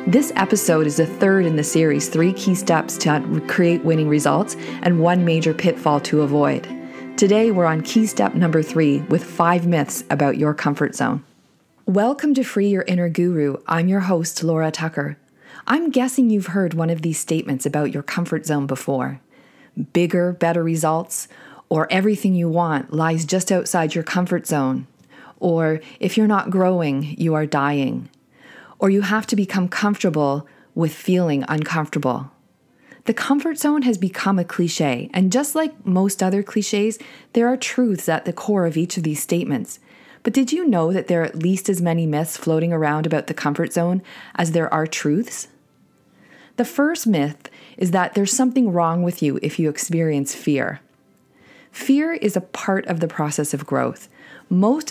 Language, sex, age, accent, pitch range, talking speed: English, female, 40-59, American, 155-205 Hz, 175 wpm